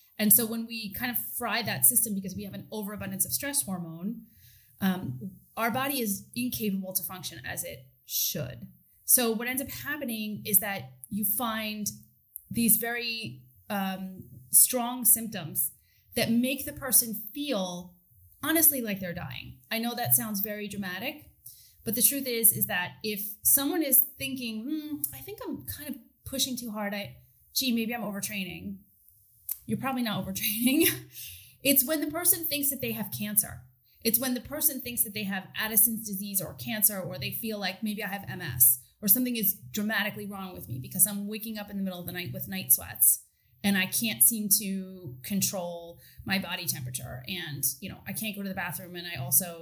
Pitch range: 170-235 Hz